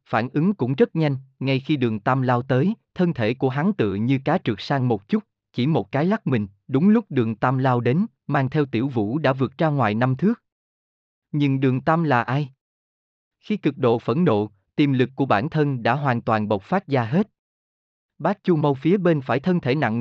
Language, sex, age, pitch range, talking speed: Vietnamese, male, 20-39, 120-175 Hz, 220 wpm